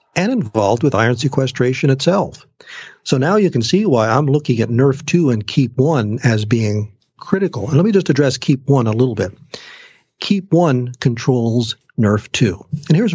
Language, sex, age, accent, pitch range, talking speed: English, male, 50-69, American, 115-150 Hz, 185 wpm